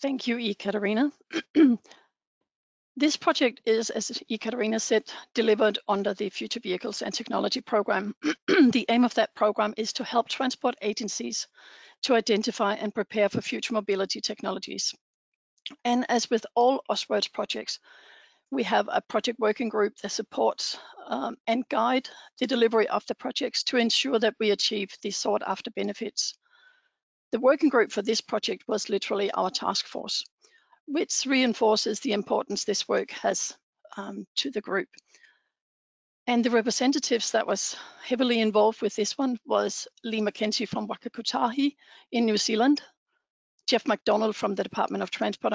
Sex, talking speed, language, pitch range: female, 150 wpm, English, 210-255 Hz